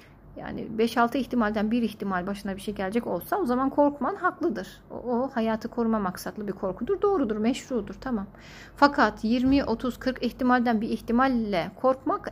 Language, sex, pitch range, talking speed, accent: Turkish, female, 215-260 Hz, 145 wpm, native